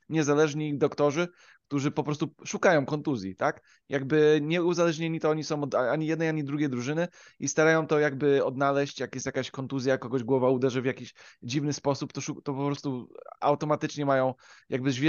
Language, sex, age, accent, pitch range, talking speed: Polish, male, 20-39, native, 135-160 Hz, 165 wpm